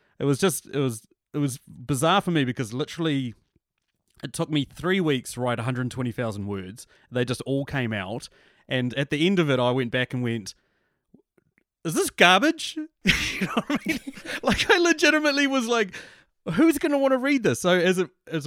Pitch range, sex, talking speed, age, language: 115-145 Hz, male, 200 wpm, 30-49, English